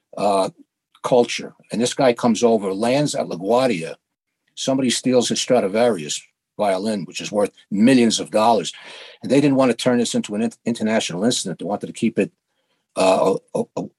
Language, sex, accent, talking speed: English, male, American, 160 wpm